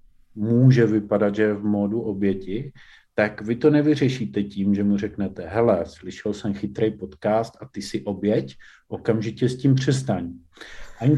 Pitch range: 105-140 Hz